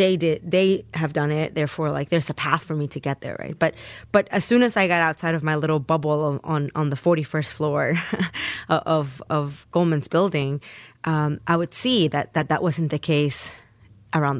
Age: 20-39